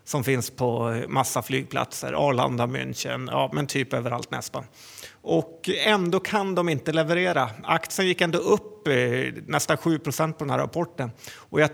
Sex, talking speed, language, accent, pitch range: male, 155 wpm, Swedish, native, 135-165 Hz